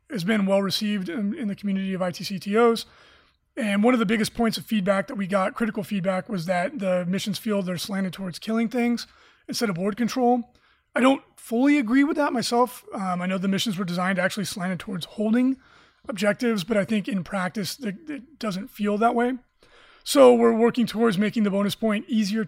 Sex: male